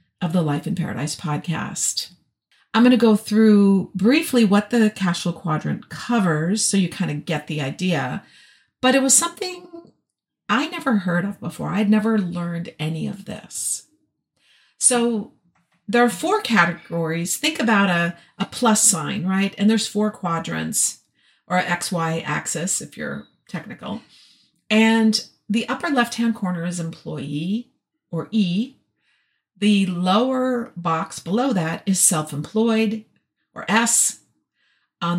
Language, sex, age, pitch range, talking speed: English, female, 50-69, 175-225 Hz, 140 wpm